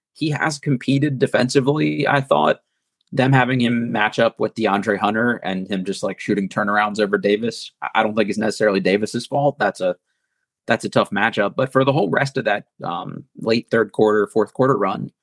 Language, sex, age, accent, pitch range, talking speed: English, male, 20-39, American, 110-135 Hz, 195 wpm